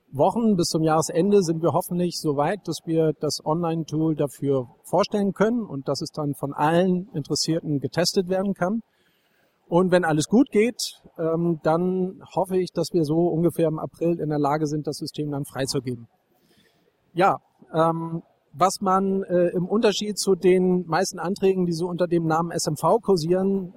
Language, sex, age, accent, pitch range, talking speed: German, male, 40-59, German, 155-190 Hz, 160 wpm